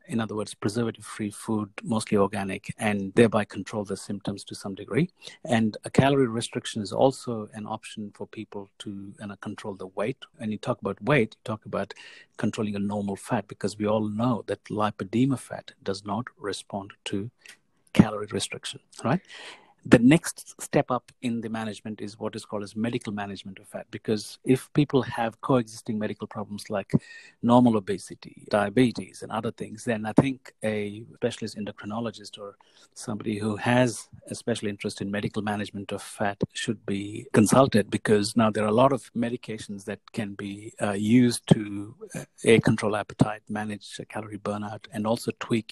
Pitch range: 105-115 Hz